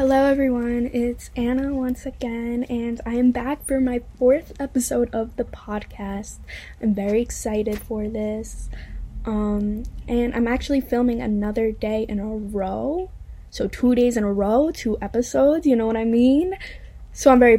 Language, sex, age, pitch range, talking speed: English, female, 10-29, 215-255 Hz, 165 wpm